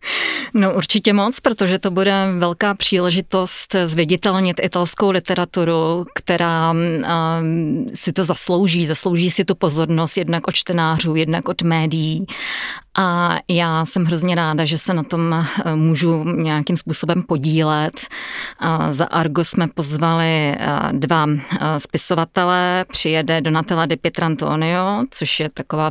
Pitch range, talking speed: 160-185 Hz, 120 wpm